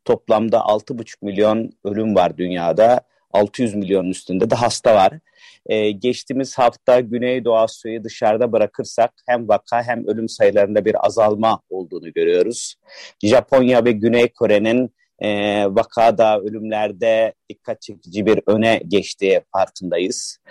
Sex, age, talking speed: male, 40-59, 125 wpm